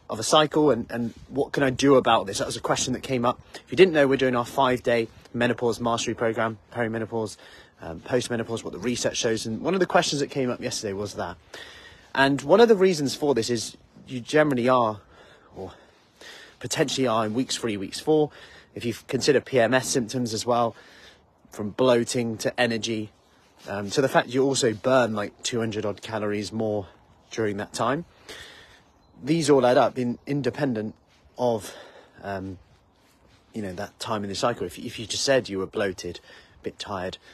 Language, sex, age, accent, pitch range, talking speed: English, male, 30-49, British, 100-130 Hz, 190 wpm